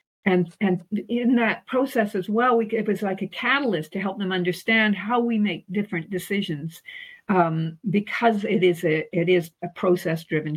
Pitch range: 175-220 Hz